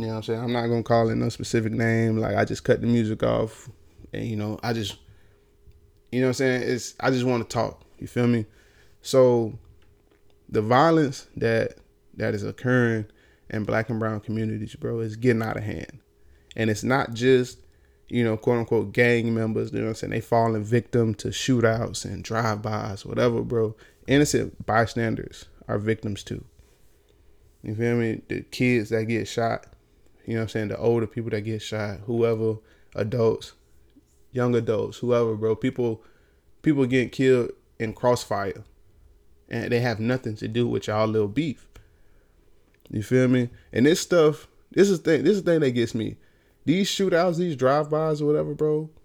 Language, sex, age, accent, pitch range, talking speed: English, male, 20-39, American, 110-130 Hz, 185 wpm